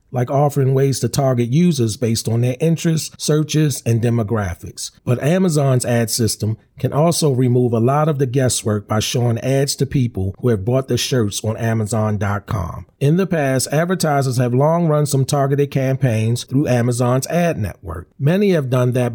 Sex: male